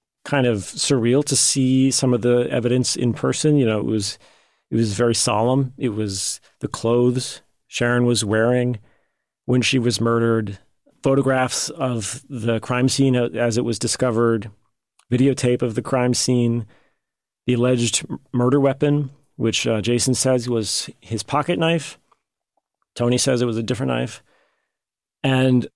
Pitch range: 115-130 Hz